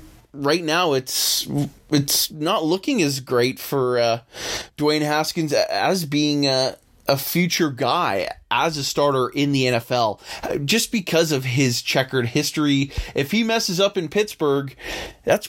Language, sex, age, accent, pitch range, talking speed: English, male, 20-39, American, 125-165 Hz, 145 wpm